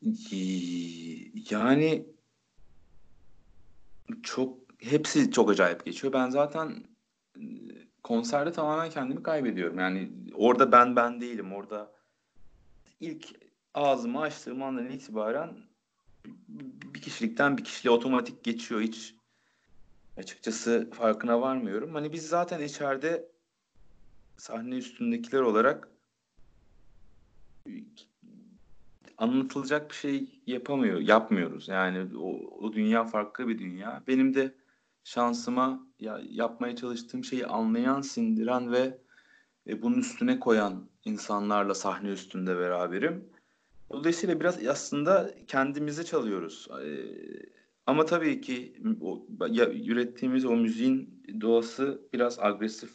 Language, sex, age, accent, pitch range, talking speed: Turkish, male, 40-59, native, 115-190 Hz, 95 wpm